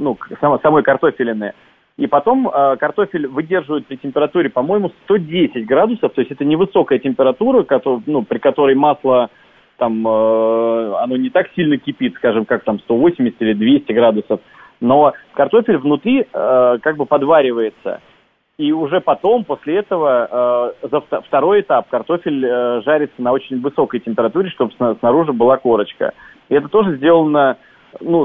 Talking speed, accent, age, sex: 145 wpm, native, 30-49, male